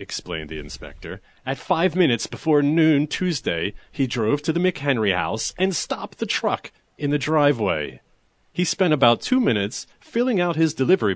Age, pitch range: 40-59, 110-160 Hz